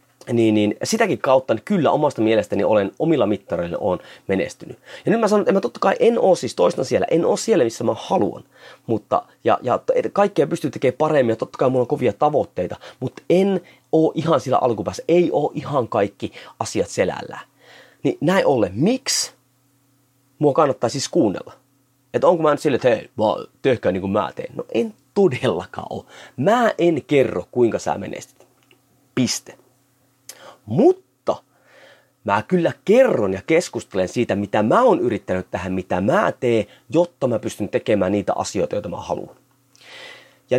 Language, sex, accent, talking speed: Finnish, male, native, 170 wpm